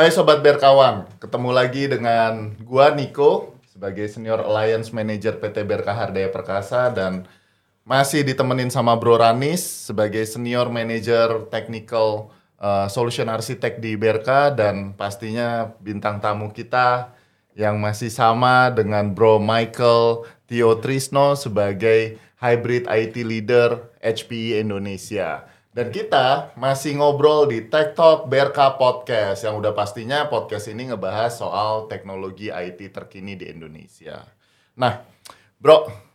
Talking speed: 120 wpm